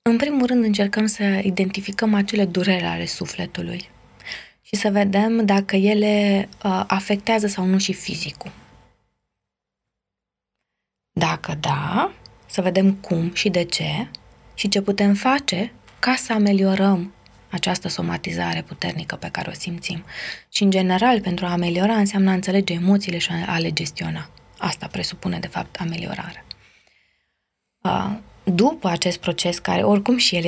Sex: female